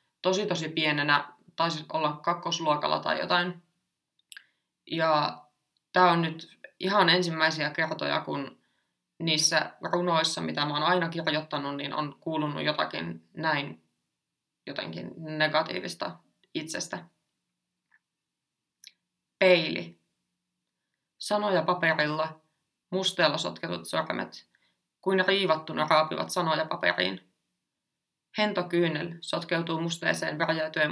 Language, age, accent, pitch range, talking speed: Finnish, 20-39, native, 150-175 Hz, 90 wpm